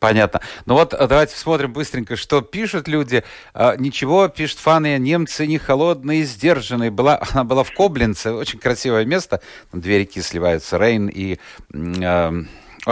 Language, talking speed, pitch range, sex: Russian, 145 wpm, 110-155 Hz, male